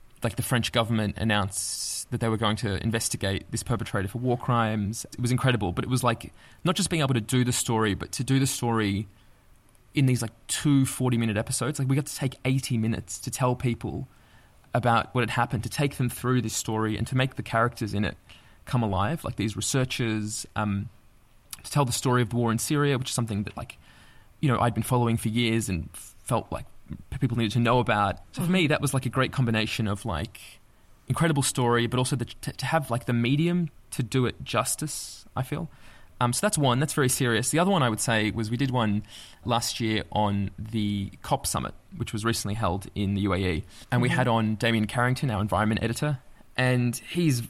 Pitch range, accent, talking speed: 110-130 Hz, Australian, 220 wpm